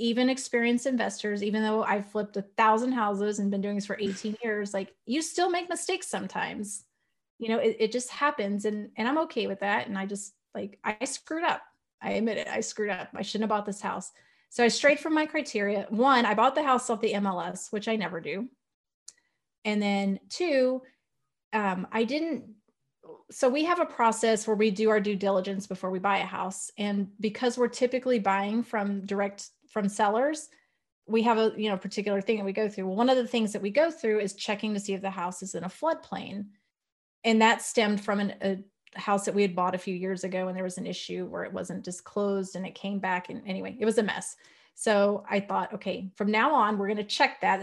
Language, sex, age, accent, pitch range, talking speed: English, female, 30-49, American, 195-235 Hz, 225 wpm